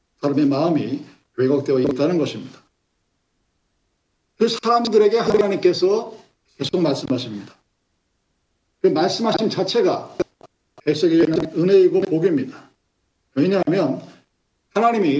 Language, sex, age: Korean, male, 50-69